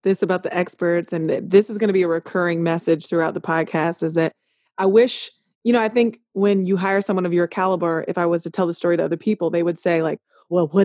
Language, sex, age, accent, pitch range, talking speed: English, female, 20-39, American, 180-230 Hz, 260 wpm